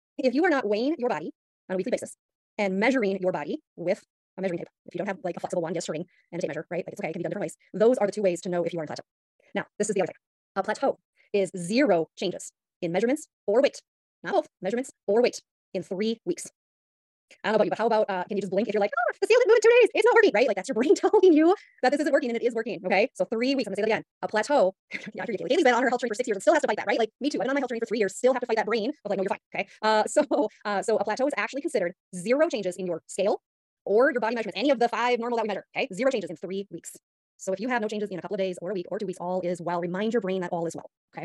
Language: English